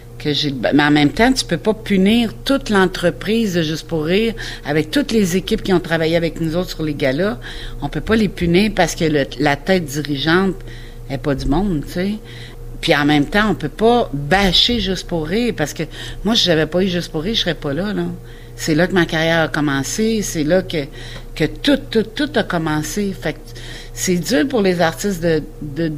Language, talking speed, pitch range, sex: French, 235 wpm, 140-185 Hz, female